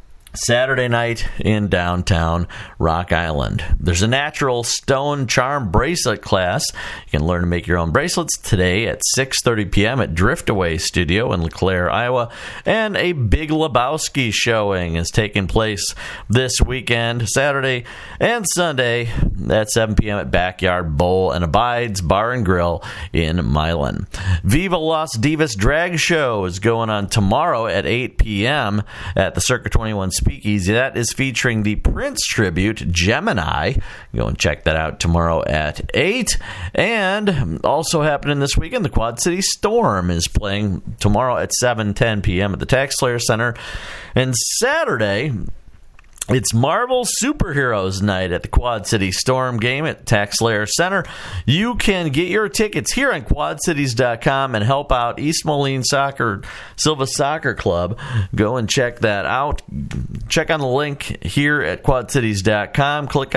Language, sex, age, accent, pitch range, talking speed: English, male, 50-69, American, 95-135 Hz, 145 wpm